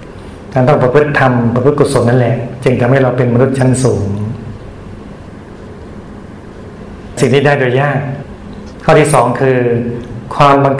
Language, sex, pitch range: Thai, male, 110-140 Hz